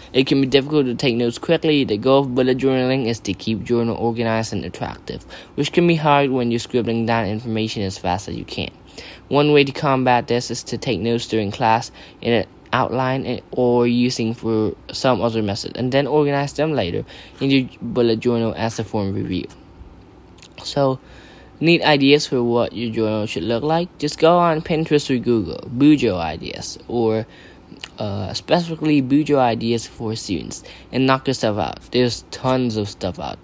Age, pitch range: 10-29, 105-130 Hz